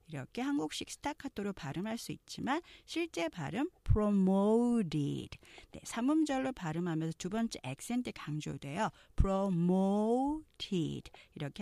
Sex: female